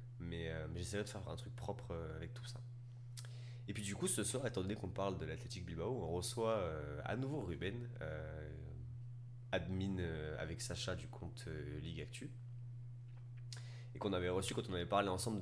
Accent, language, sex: French, French, male